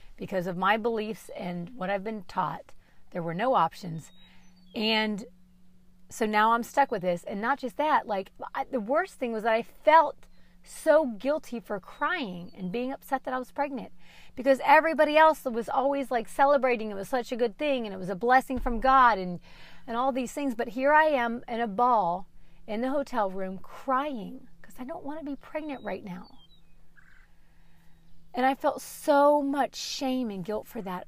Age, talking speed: 40-59, 190 wpm